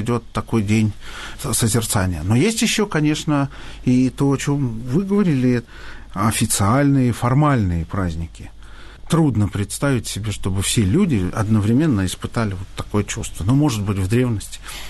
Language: Russian